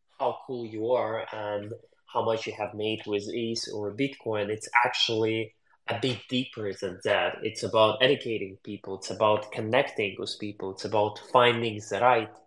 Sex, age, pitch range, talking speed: male, 20-39, 110-125 Hz, 170 wpm